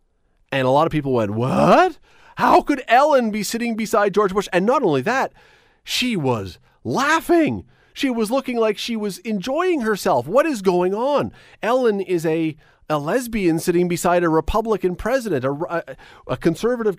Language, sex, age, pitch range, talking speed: English, male, 40-59, 135-220 Hz, 165 wpm